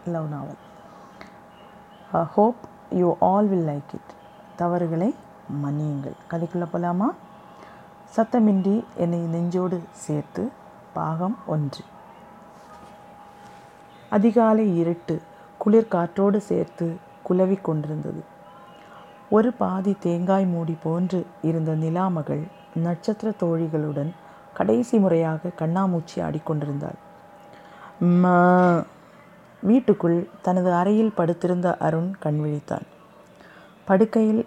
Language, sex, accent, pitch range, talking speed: Tamil, female, native, 160-200 Hz, 75 wpm